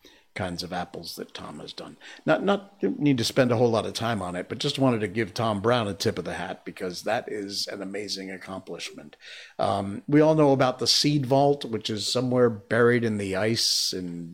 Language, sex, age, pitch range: English, male, 50-69, 95-140 Hz